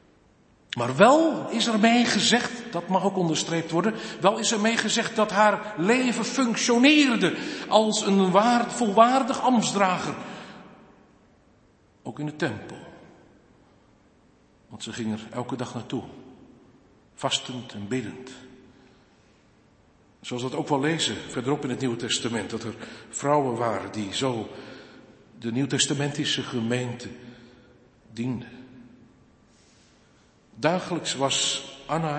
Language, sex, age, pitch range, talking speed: Dutch, male, 50-69, 130-200 Hz, 115 wpm